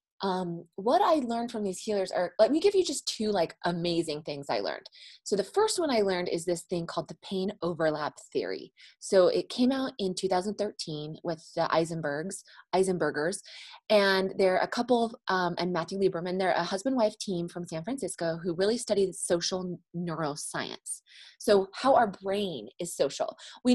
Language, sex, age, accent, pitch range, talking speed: English, female, 20-39, American, 175-250 Hz, 180 wpm